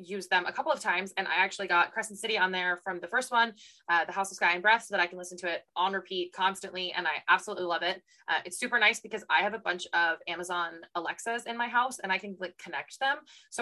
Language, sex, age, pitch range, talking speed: English, female, 20-39, 170-200 Hz, 275 wpm